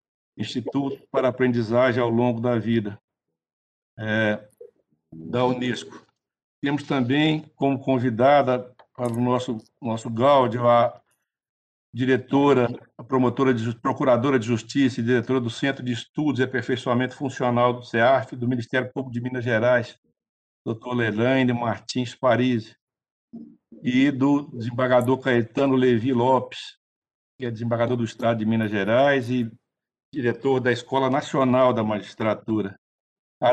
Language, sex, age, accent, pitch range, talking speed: Portuguese, male, 60-79, Brazilian, 115-130 Hz, 125 wpm